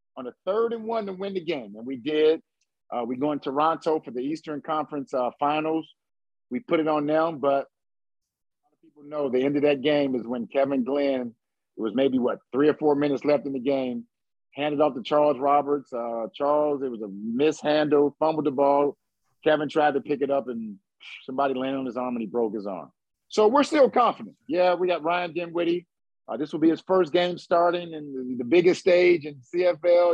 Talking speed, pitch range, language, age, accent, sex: 220 wpm, 140-175 Hz, English, 50-69, American, male